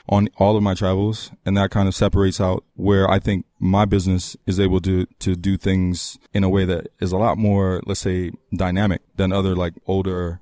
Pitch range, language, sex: 95-105 Hz, English, male